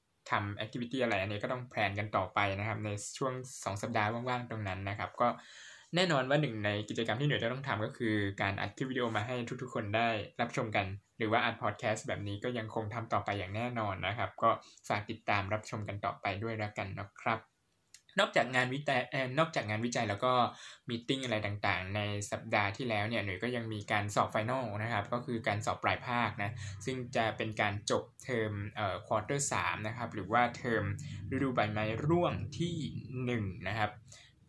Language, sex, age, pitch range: Thai, male, 10-29, 105-125 Hz